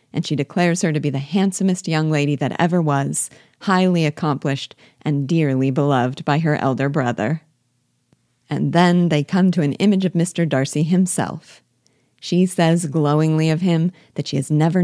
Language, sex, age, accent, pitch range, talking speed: English, female, 40-59, American, 140-175 Hz, 170 wpm